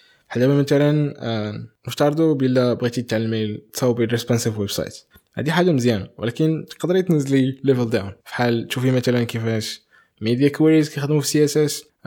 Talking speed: 150 wpm